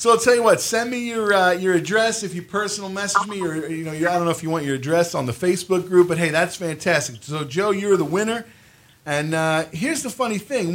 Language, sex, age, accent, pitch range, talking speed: English, male, 40-59, American, 165-215 Hz, 260 wpm